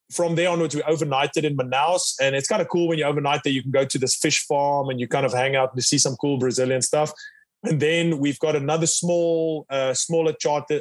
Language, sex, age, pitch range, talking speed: English, male, 20-39, 135-165 Hz, 245 wpm